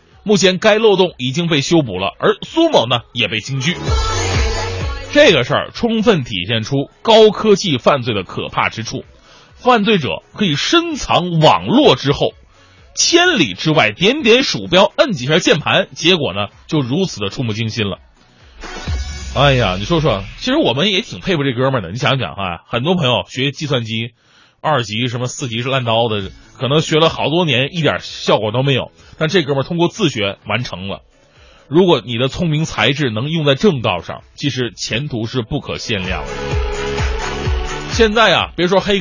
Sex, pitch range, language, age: male, 110-165 Hz, Chinese, 20-39